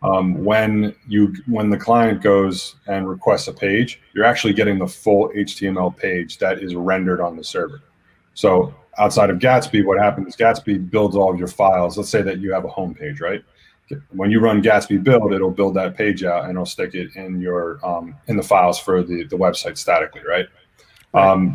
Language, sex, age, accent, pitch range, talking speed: English, male, 30-49, American, 95-120 Hz, 205 wpm